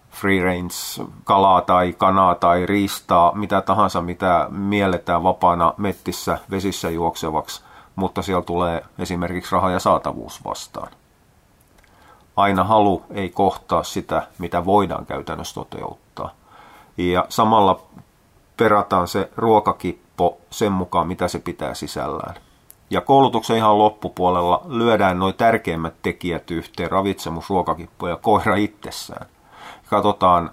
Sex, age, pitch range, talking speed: male, 30-49, 85-105 Hz, 110 wpm